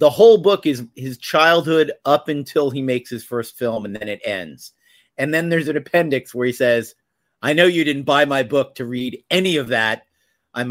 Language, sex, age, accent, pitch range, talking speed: English, male, 50-69, American, 120-155 Hz, 215 wpm